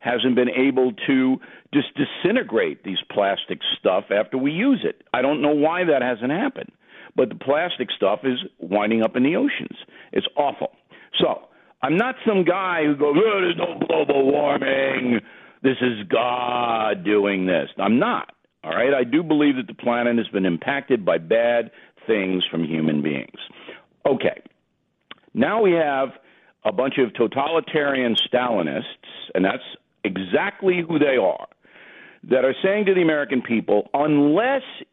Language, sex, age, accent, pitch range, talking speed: English, male, 50-69, American, 120-190 Hz, 155 wpm